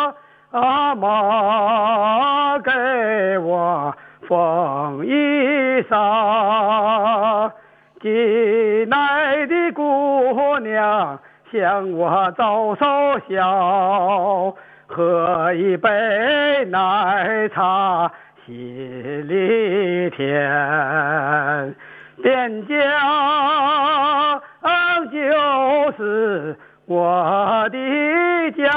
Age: 50-69